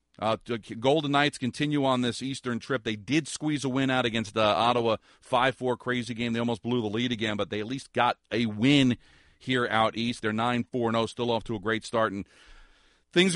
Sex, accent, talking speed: male, American, 210 wpm